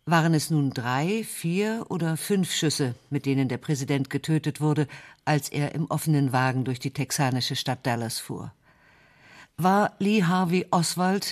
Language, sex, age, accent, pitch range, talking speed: German, female, 50-69, German, 140-170 Hz, 155 wpm